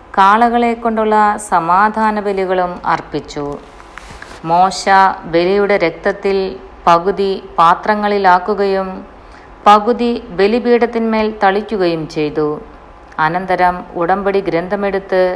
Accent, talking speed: native, 65 wpm